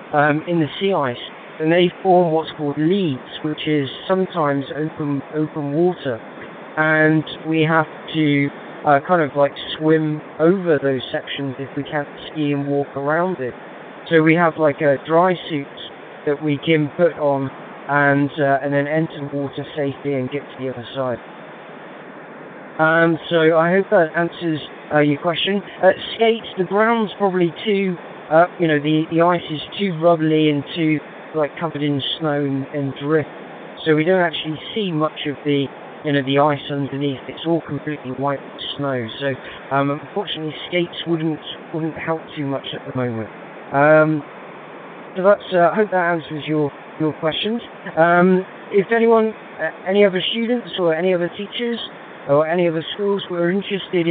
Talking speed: 175 wpm